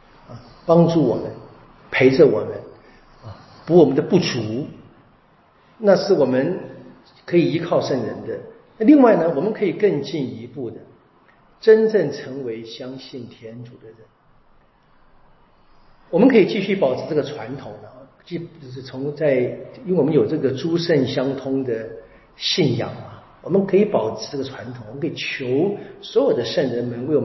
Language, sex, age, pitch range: Chinese, male, 50-69, 125-185 Hz